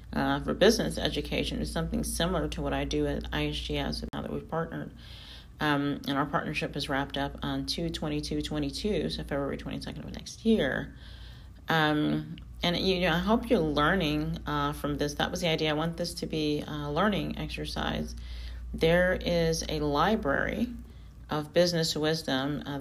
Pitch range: 140-170 Hz